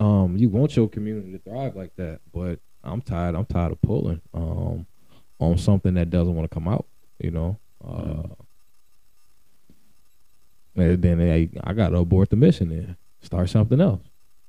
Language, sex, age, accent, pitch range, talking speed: English, male, 20-39, American, 85-100 Hz, 155 wpm